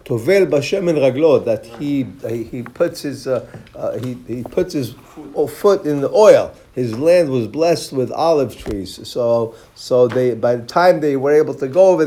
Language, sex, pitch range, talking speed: English, male, 140-185 Hz, 170 wpm